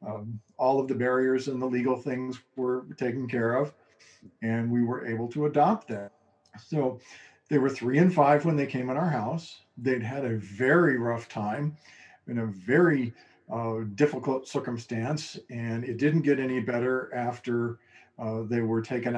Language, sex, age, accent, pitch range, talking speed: English, male, 50-69, American, 115-145 Hz, 170 wpm